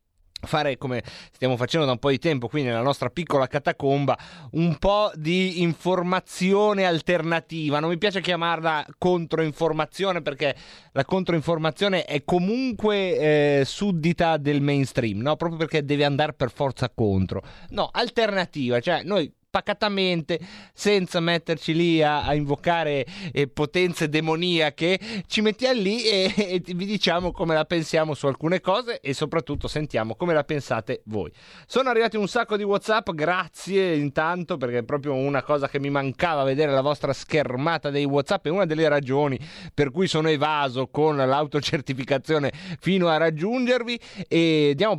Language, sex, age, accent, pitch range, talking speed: Italian, male, 30-49, native, 145-185 Hz, 150 wpm